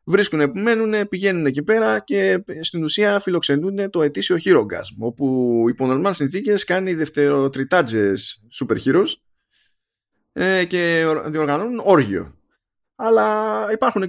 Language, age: Greek, 20-39